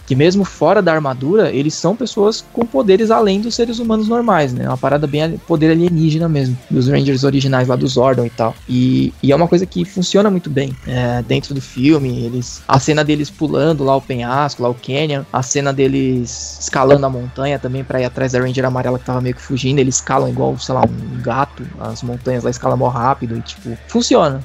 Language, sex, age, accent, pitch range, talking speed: Portuguese, male, 20-39, Brazilian, 135-175 Hz, 215 wpm